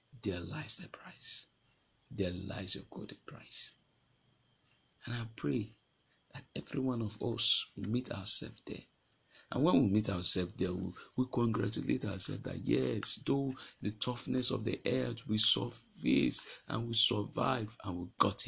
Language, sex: English, male